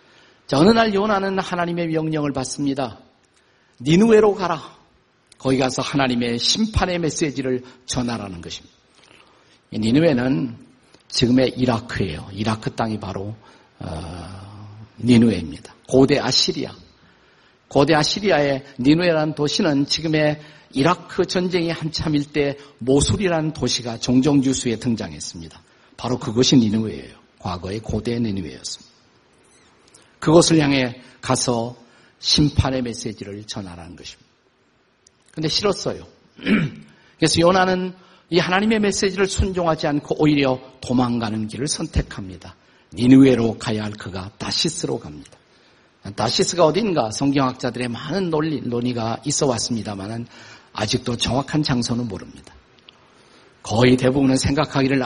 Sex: male